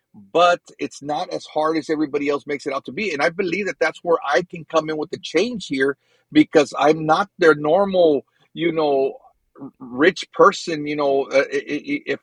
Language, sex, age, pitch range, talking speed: English, male, 40-59, 150-190 Hz, 190 wpm